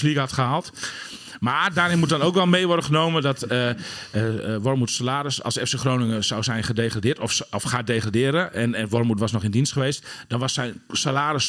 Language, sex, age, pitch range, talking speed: English, male, 40-59, 115-145 Hz, 205 wpm